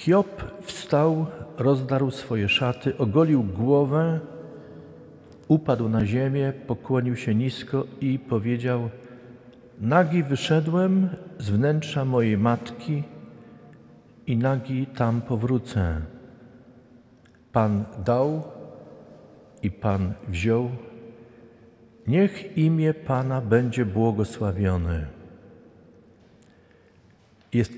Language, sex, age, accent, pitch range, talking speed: Polish, male, 50-69, native, 105-145 Hz, 80 wpm